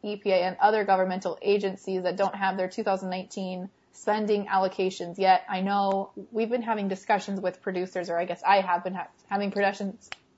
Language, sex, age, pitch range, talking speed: English, female, 20-39, 185-225 Hz, 175 wpm